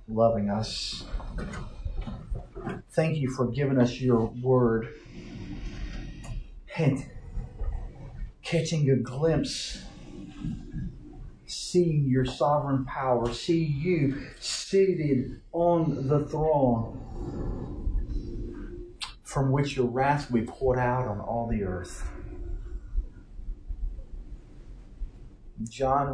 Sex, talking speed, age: male, 85 wpm, 50-69